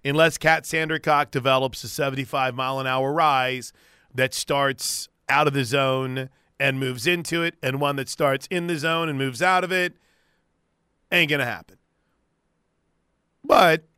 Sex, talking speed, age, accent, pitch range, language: male, 145 wpm, 40-59, American, 125-155 Hz, English